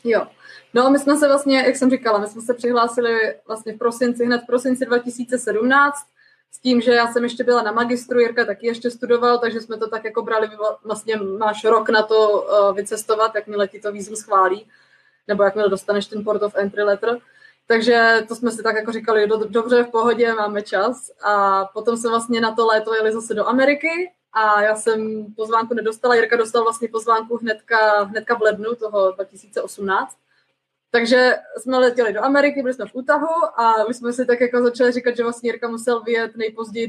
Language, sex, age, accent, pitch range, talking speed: Czech, female, 20-39, native, 220-250 Hz, 195 wpm